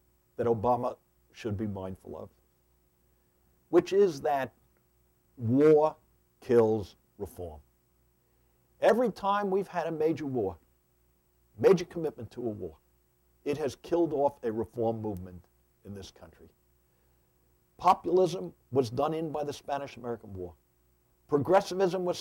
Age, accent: 60-79, American